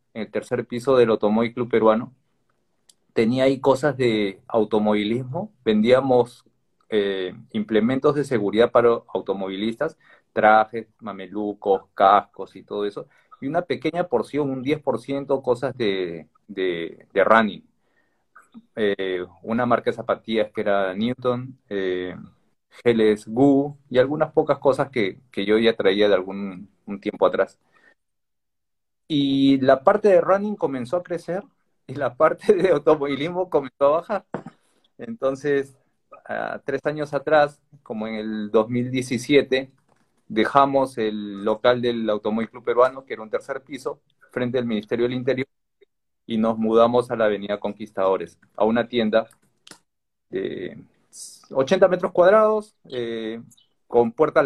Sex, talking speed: male, 135 wpm